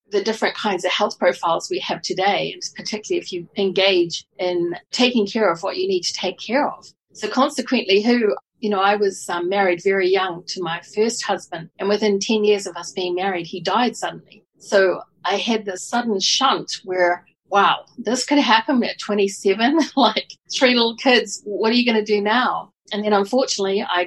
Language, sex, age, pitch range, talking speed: English, female, 40-59, 185-225 Hz, 195 wpm